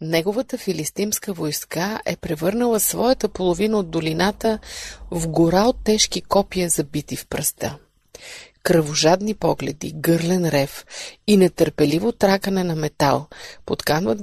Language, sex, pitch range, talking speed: Bulgarian, female, 155-200 Hz, 115 wpm